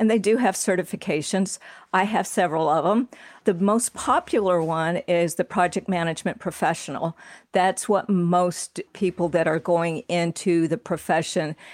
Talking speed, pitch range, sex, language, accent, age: 150 wpm, 175-210 Hz, female, English, American, 50-69